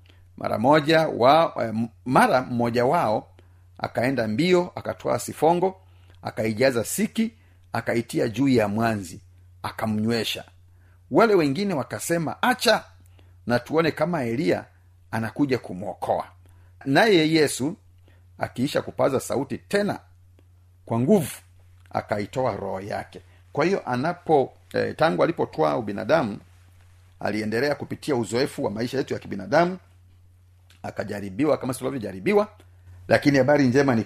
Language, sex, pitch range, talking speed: Swahili, male, 90-120 Hz, 105 wpm